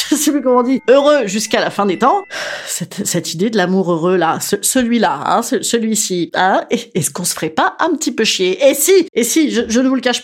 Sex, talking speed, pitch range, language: female, 265 wpm, 190-300 Hz, French